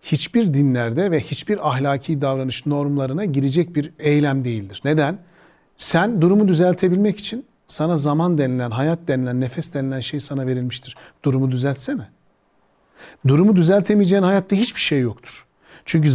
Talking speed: 135 wpm